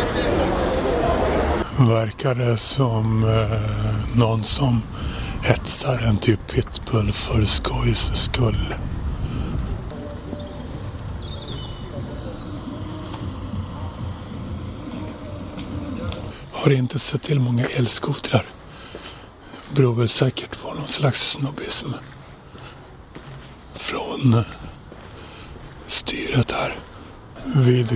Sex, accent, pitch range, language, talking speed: male, native, 95-120 Hz, Swedish, 70 wpm